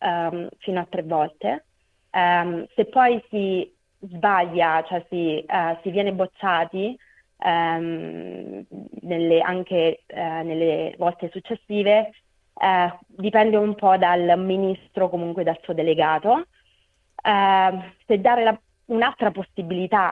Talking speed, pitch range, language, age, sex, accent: 115 wpm, 165-195 Hz, Italian, 30-49, female, native